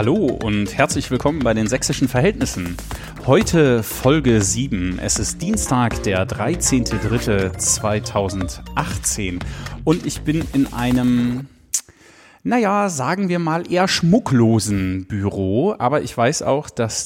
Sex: male